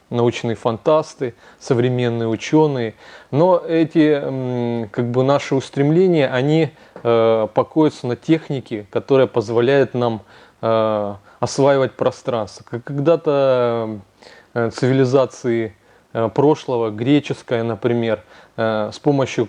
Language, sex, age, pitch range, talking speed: Russian, male, 20-39, 115-145 Hz, 100 wpm